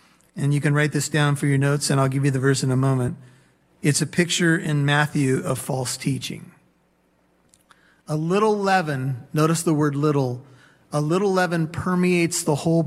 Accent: American